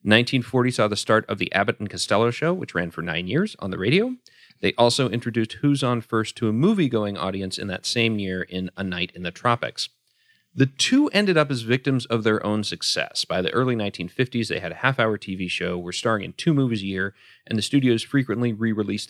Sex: male